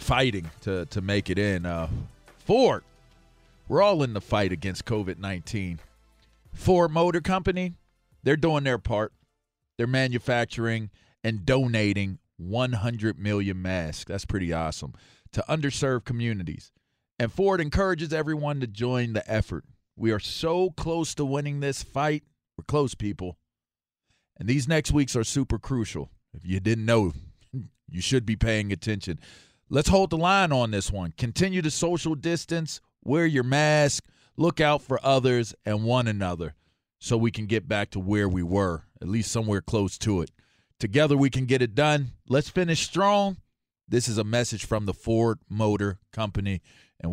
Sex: male